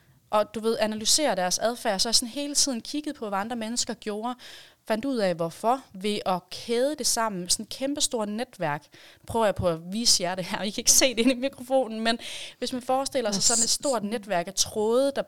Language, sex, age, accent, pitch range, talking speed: Danish, female, 30-49, native, 195-245 Hz, 240 wpm